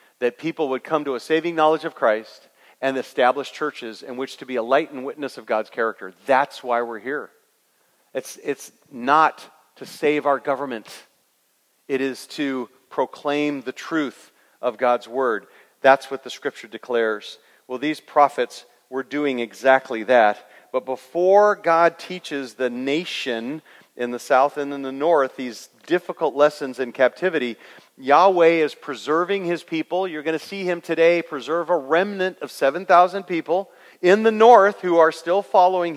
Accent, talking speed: American, 165 wpm